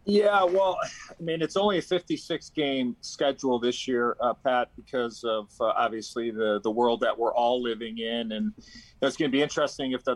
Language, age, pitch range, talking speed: English, 40-59, 120-140 Hz, 200 wpm